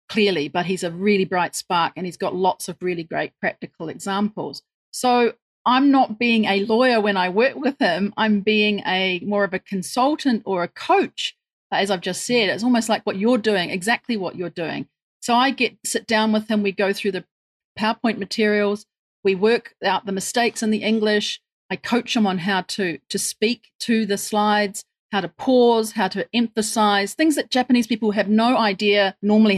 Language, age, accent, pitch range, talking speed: English, 40-59, Australian, 195-230 Hz, 195 wpm